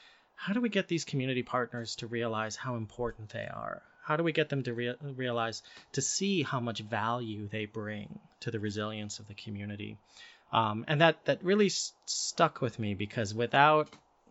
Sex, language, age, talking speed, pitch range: male, English, 30-49, 190 wpm, 105-125 Hz